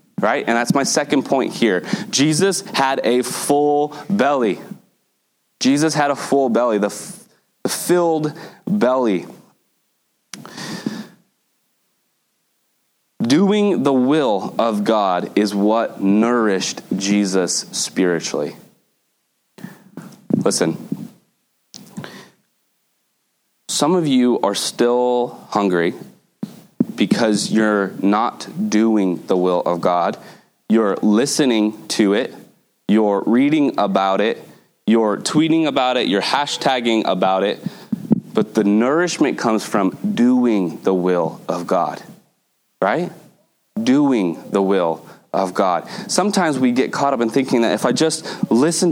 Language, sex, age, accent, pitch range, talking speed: English, male, 30-49, American, 105-160 Hz, 110 wpm